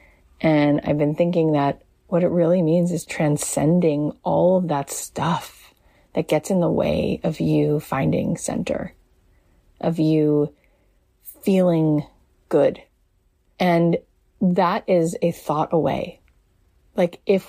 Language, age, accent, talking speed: English, 30-49, American, 125 wpm